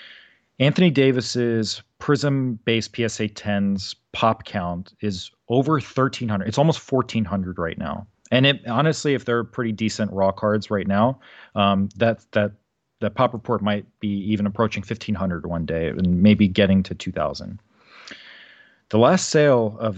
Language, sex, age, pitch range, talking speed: English, male, 40-59, 100-125 Hz, 140 wpm